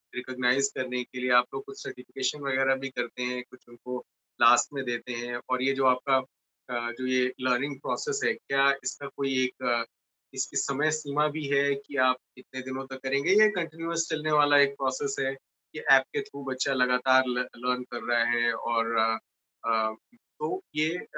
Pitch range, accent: 125-145 Hz, native